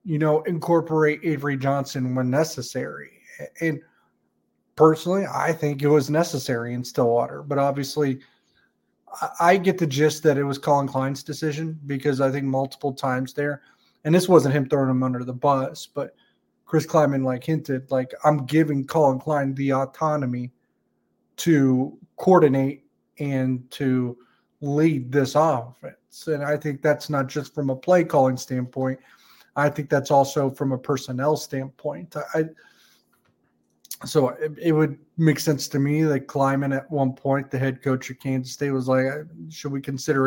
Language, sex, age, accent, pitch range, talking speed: English, male, 30-49, American, 130-150 Hz, 160 wpm